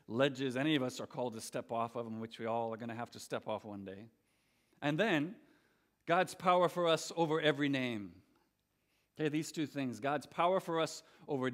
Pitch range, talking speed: 125-155 Hz, 215 wpm